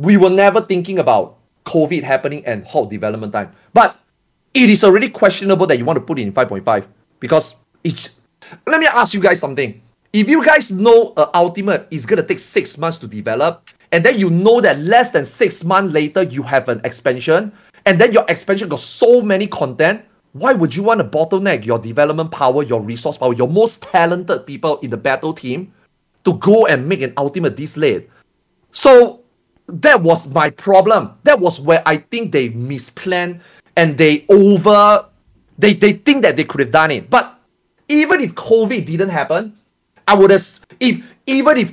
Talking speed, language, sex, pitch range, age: 190 wpm, English, male, 155-210 Hz, 30-49